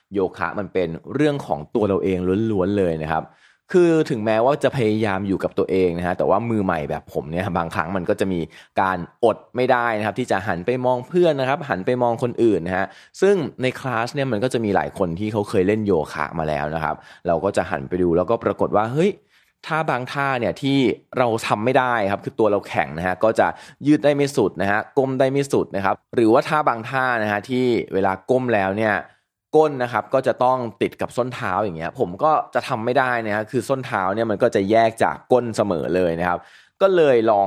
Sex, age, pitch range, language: male, 20-39, 95-135 Hz, Thai